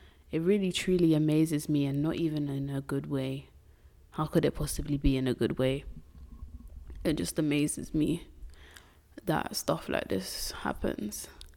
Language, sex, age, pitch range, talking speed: English, female, 20-39, 135-170 Hz, 155 wpm